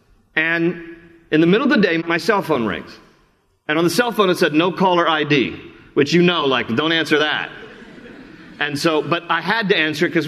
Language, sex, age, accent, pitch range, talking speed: English, male, 40-59, American, 145-185 Hz, 215 wpm